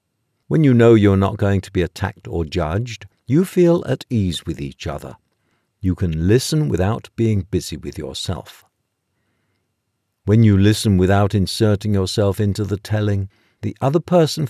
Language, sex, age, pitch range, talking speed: English, male, 60-79, 95-120 Hz, 155 wpm